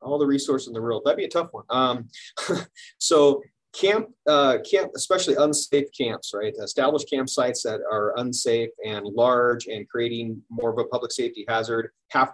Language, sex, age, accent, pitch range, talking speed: English, male, 30-49, American, 120-145 Hz, 175 wpm